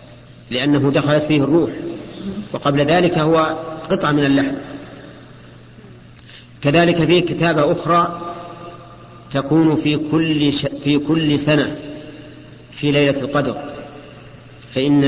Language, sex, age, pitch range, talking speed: Arabic, male, 50-69, 135-155 Hz, 90 wpm